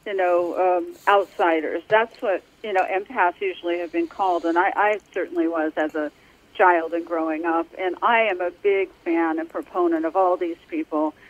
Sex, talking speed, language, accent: female, 190 wpm, English, American